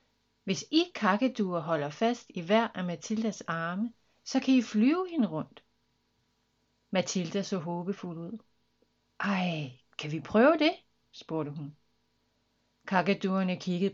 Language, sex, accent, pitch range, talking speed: Danish, female, native, 155-230 Hz, 125 wpm